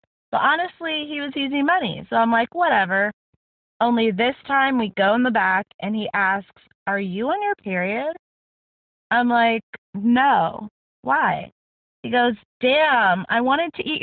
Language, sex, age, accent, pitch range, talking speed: English, female, 20-39, American, 195-255 Hz, 155 wpm